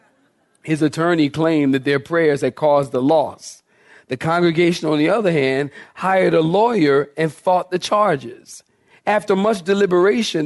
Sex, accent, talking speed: male, American, 150 wpm